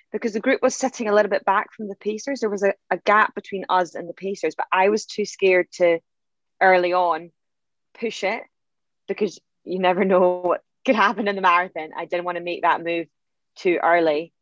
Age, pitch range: 20-39, 165-200 Hz